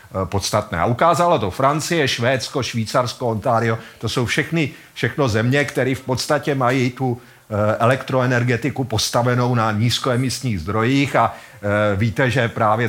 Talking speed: 135 wpm